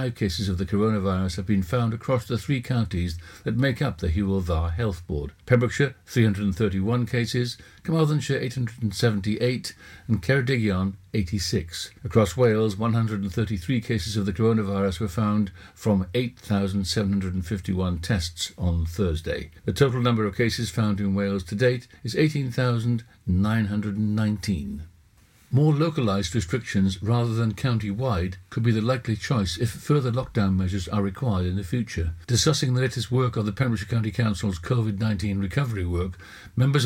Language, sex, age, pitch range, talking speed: English, male, 60-79, 100-120 Hz, 140 wpm